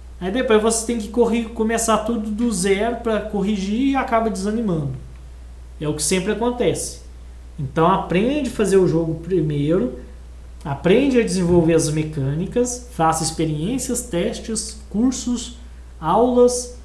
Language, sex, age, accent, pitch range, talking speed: Portuguese, male, 20-39, Brazilian, 145-225 Hz, 130 wpm